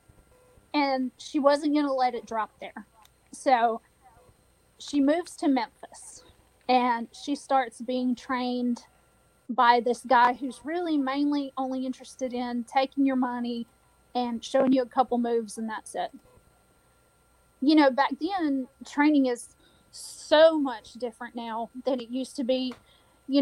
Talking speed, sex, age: 145 wpm, female, 30-49